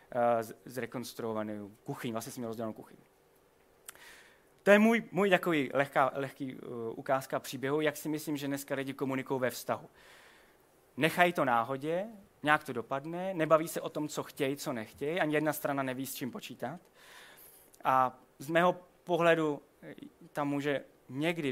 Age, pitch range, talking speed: 30-49, 125-155 Hz, 150 wpm